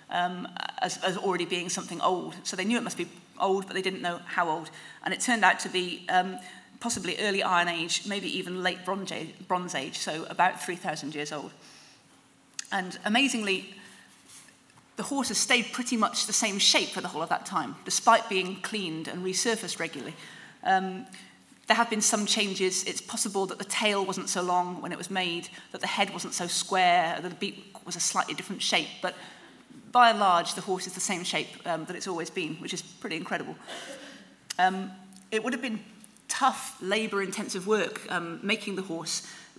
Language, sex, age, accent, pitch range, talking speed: English, female, 30-49, British, 180-210 Hz, 195 wpm